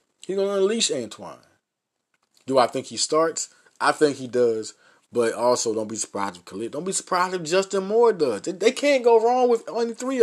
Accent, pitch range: American, 120-165 Hz